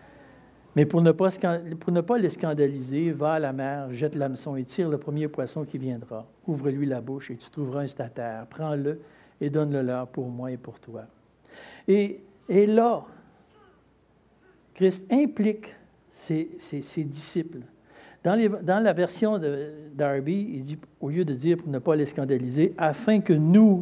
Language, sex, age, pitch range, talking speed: French, male, 60-79, 140-205 Hz, 175 wpm